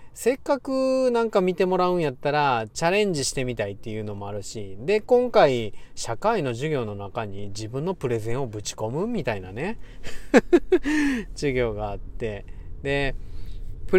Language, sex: Japanese, male